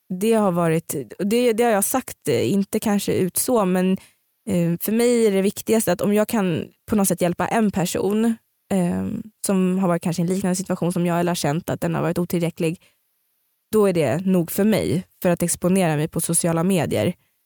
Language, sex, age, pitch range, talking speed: Swedish, female, 20-39, 180-230 Hz, 205 wpm